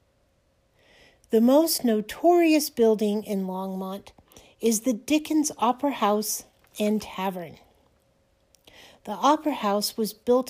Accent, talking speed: American, 105 wpm